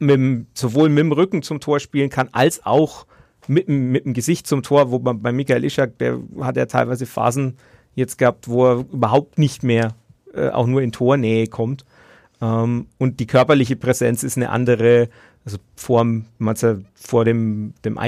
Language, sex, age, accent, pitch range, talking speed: German, male, 40-59, German, 120-140 Hz, 185 wpm